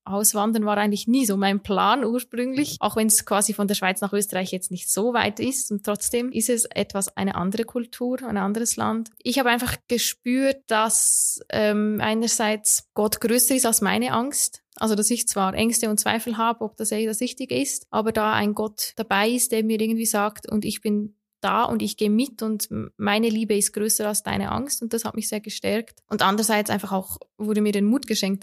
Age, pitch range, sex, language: 20-39, 205-230 Hz, female, German